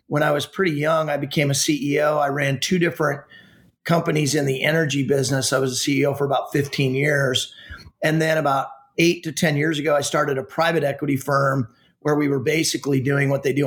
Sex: male